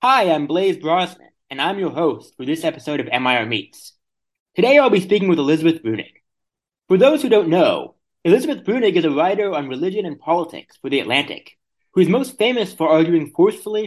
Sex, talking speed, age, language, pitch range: male, 195 wpm, 30-49, English, 135-185 Hz